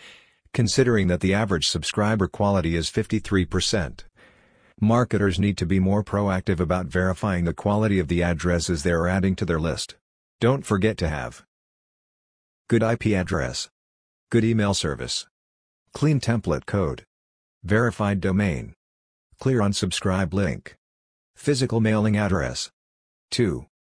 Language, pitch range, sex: English, 85-105 Hz, male